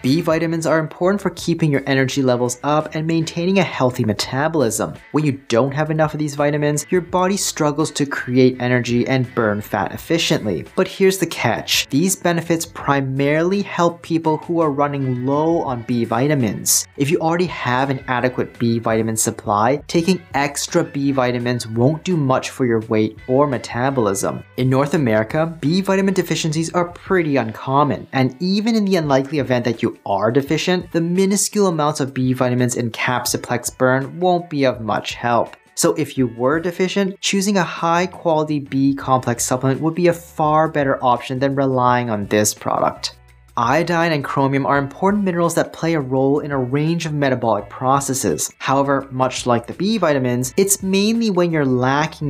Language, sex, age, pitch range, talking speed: English, male, 30-49, 125-165 Hz, 175 wpm